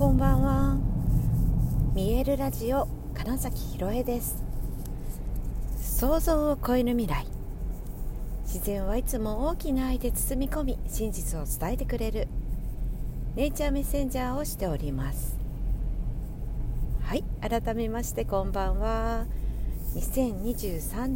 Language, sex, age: Japanese, female, 50-69